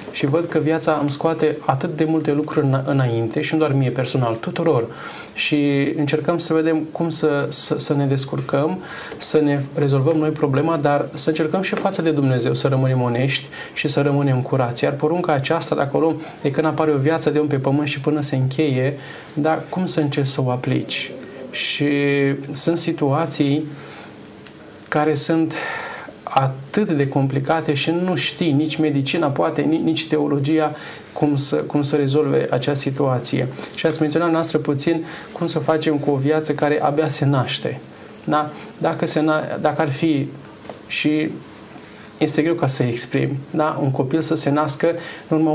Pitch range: 140-160 Hz